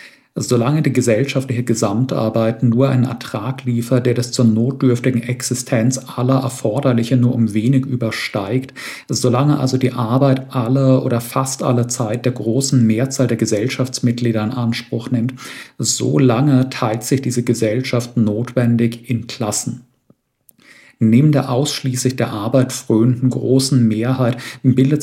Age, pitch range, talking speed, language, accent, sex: 50-69, 115-130 Hz, 125 wpm, German, German, male